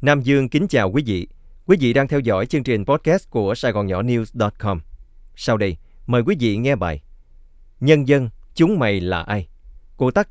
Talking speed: 200 wpm